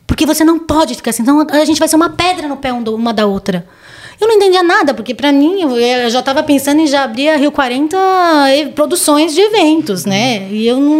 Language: Portuguese